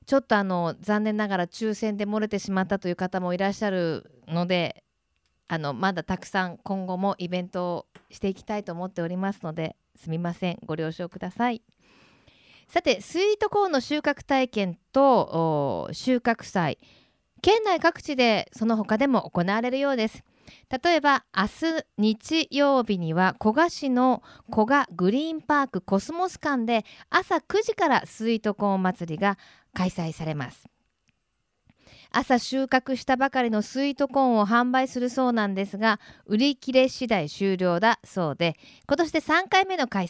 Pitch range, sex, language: 180-265 Hz, female, Japanese